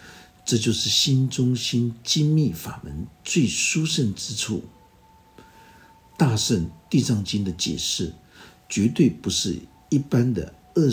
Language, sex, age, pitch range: Chinese, male, 60-79, 90-135 Hz